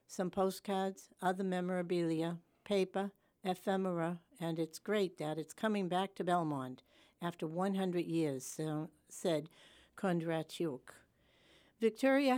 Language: English